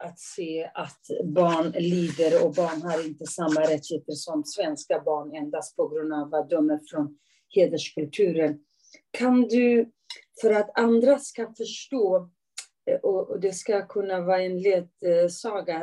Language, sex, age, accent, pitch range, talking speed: English, female, 40-59, Swedish, 160-220 Hz, 135 wpm